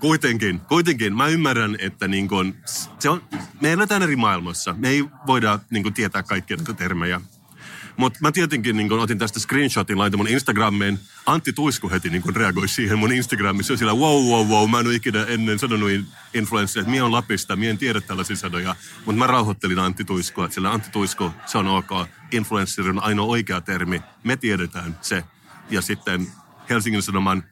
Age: 30-49